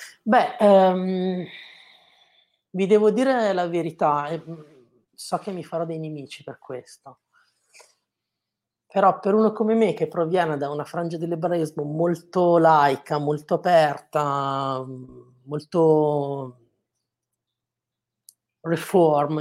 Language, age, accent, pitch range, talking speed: Italian, 30-49, native, 140-180 Hz, 100 wpm